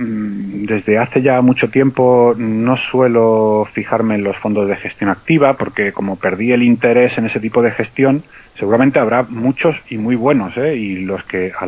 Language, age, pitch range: Spanish, 30-49, 100-125 Hz